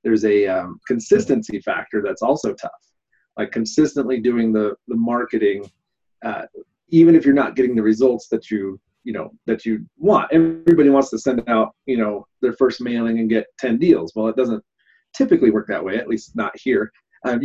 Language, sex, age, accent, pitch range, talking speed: English, male, 30-49, American, 110-160 Hz, 190 wpm